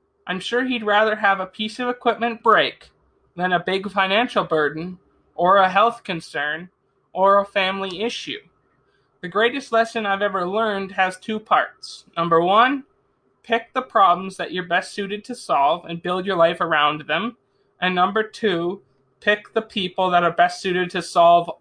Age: 20-39